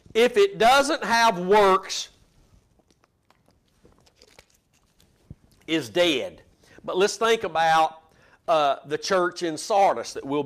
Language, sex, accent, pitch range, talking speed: English, male, American, 160-230 Hz, 105 wpm